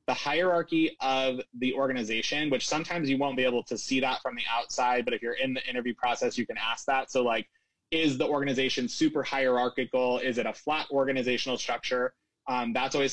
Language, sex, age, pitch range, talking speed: English, male, 20-39, 125-145 Hz, 200 wpm